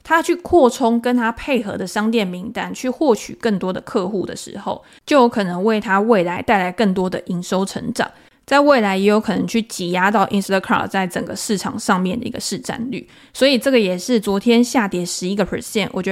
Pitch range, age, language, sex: 195-240 Hz, 20-39, Chinese, female